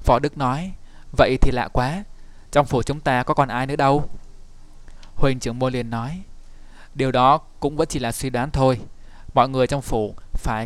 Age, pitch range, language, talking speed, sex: 20-39, 120-140 Hz, Vietnamese, 195 wpm, male